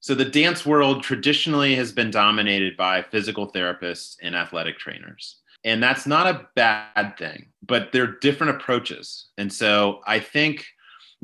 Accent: American